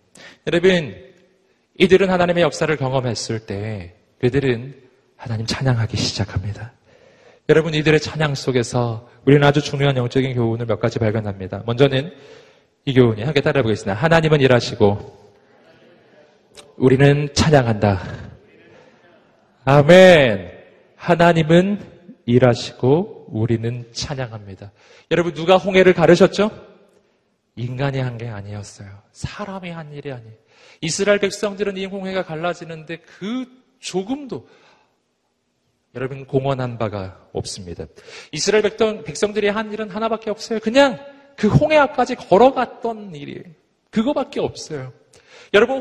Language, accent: Korean, native